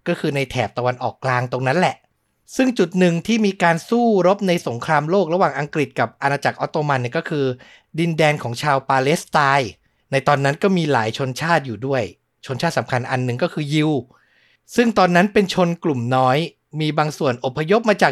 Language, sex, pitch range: Thai, male, 135-175 Hz